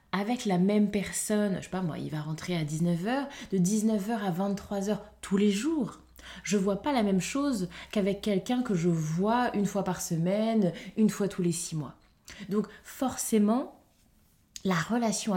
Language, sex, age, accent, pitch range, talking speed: French, female, 20-39, French, 175-225 Hz, 185 wpm